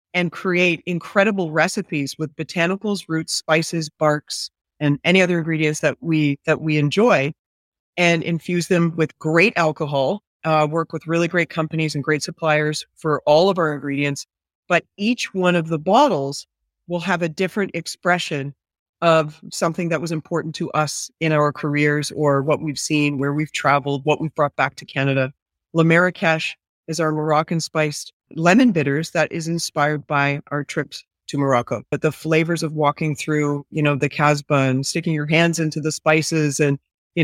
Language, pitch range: English, 150-170 Hz